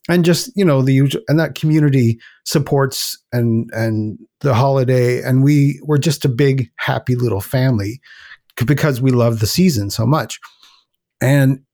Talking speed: 160 wpm